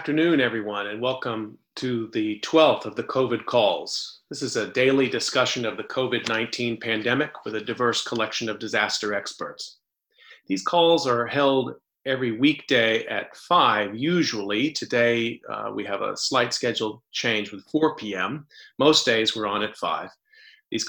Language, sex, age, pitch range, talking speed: English, male, 40-59, 110-130 Hz, 160 wpm